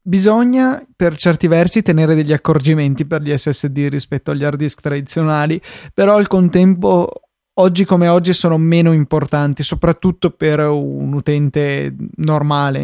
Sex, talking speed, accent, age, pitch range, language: male, 135 wpm, native, 20-39, 145-165 Hz, Italian